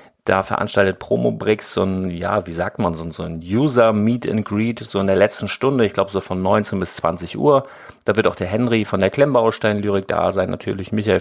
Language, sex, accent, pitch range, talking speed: German, male, German, 90-115 Hz, 205 wpm